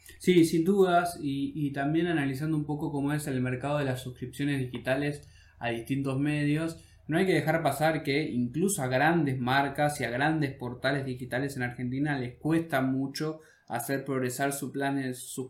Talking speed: 170 wpm